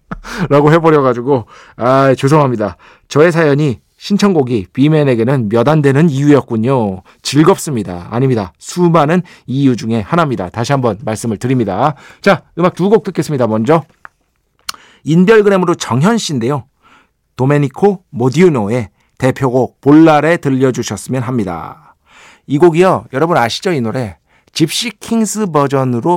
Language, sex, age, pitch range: Korean, male, 40-59, 115-175 Hz